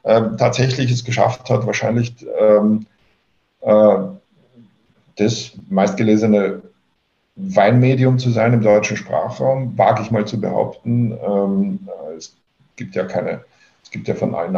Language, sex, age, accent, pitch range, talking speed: German, male, 50-69, German, 105-125 Hz, 130 wpm